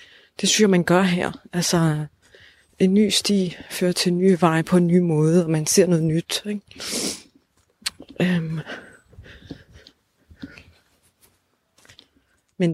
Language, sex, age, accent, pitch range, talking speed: Danish, female, 30-49, native, 155-180 Hz, 120 wpm